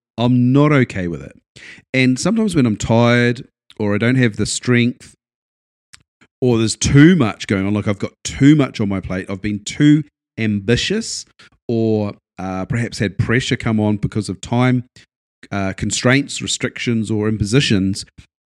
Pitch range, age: 105-130 Hz, 40-59